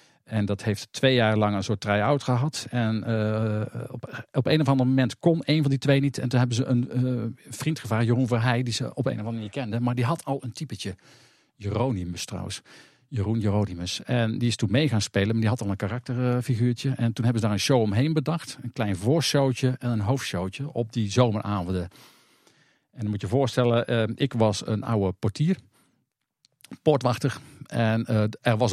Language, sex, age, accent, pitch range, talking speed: Dutch, male, 50-69, Dutch, 105-135 Hz, 210 wpm